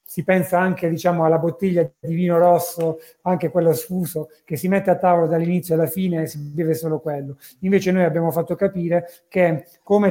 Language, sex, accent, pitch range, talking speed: Italian, male, native, 160-185 Hz, 190 wpm